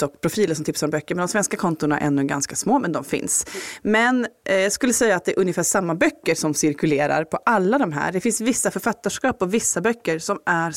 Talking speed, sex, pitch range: 240 wpm, female, 155-210 Hz